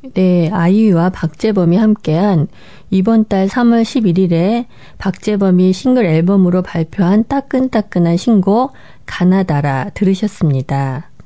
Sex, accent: female, native